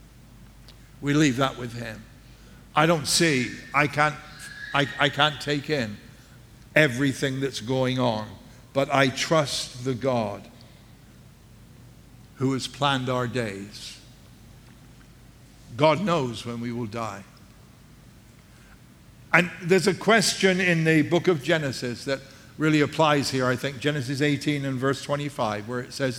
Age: 60-79